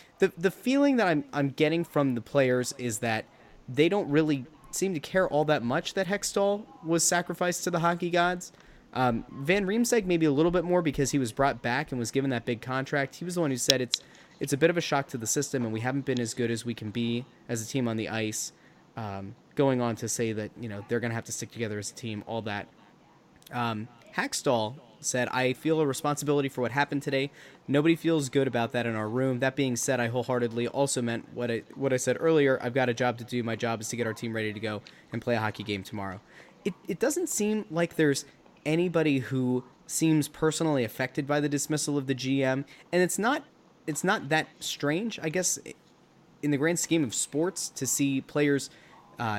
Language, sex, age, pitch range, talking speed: English, male, 20-39, 120-160 Hz, 230 wpm